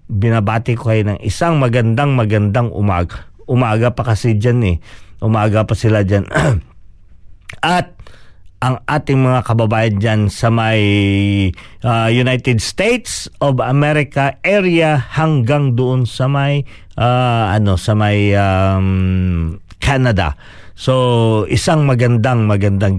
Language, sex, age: Filipino, male, 50-69